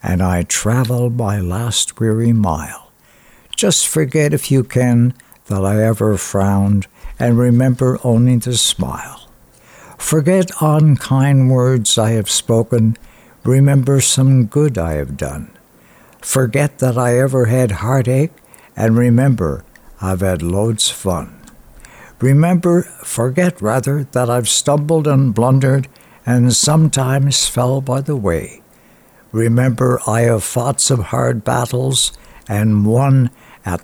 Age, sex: 60-79, male